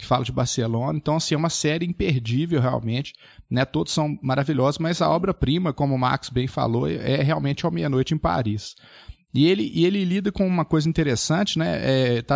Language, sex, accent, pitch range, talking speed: Portuguese, male, Brazilian, 130-160 Hz, 190 wpm